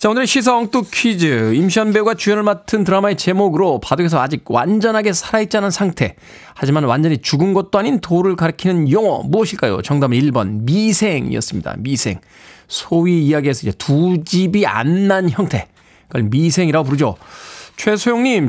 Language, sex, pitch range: Korean, male, 130-185 Hz